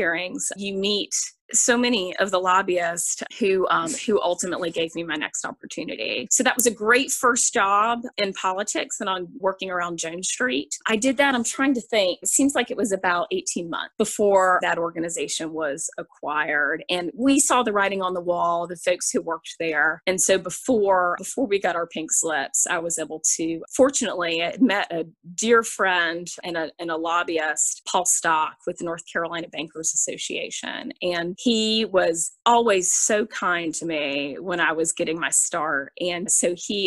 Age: 20-39